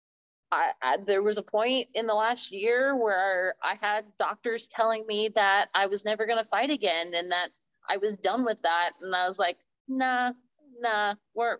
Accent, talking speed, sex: American, 195 wpm, female